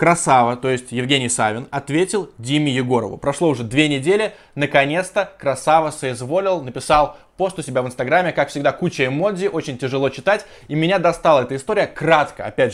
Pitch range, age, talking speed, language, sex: 130-175 Hz, 20-39, 165 wpm, Russian, male